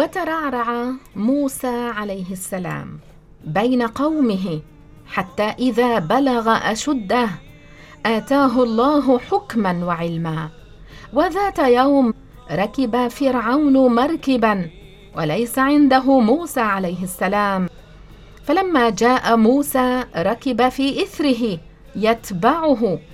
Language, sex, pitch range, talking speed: English, female, 190-265 Hz, 80 wpm